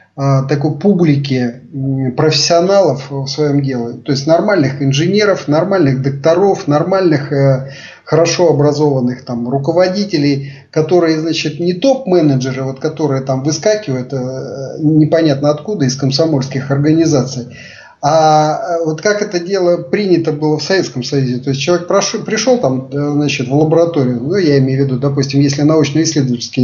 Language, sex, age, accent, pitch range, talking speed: Russian, male, 30-49, native, 135-175 Hz, 120 wpm